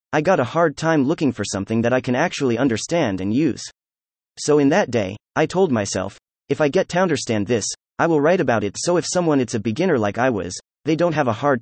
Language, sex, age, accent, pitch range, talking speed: English, male, 30-49, American, 110-160 Hz, 245 wpm